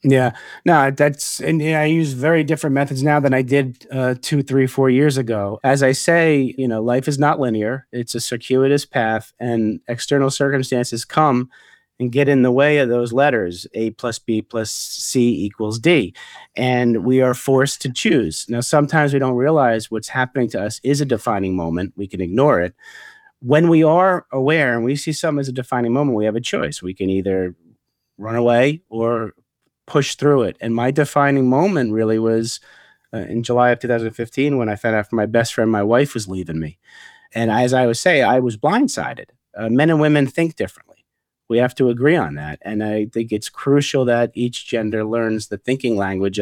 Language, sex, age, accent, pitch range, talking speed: English, male, 30-49, American, 110-140 Hz, 200 wpm